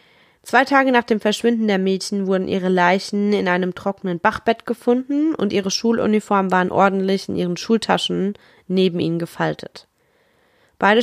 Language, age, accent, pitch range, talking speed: German, 20-39, German, 185-225 Hz, 145 wpm